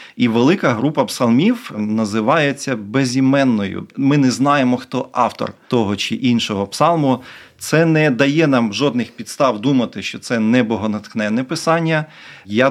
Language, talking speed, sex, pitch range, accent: Ukrainian, 130 wpm, male, 110-135 Hz, native